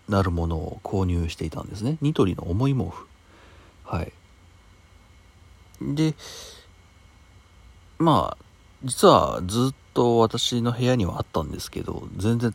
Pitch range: 85-115 Hz